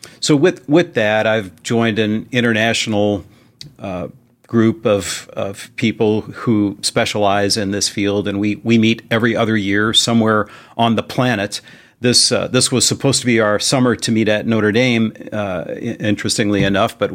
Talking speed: 170 wpm